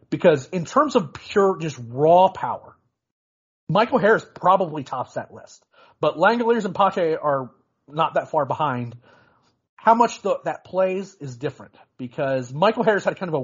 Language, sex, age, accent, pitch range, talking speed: English, male, 40-59, American, 135-170 Hz, 165 wpm